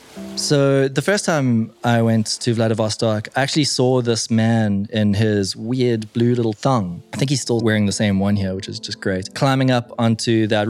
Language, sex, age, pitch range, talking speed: English, male, 20-39, 100-120 Hz, 200 wpm